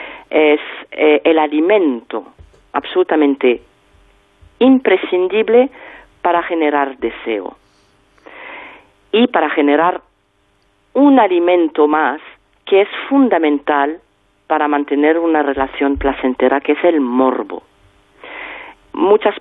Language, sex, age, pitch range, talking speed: Spanish, female, 40-59, 150-200 Hz, 85 wpm